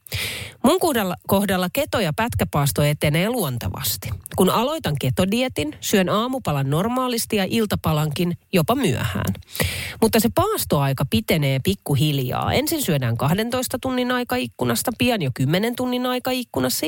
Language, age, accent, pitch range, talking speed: Finnish, 30-49, native, 130-205 Hz, 115 wpm